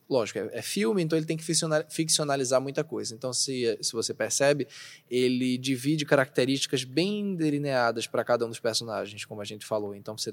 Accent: Brazilian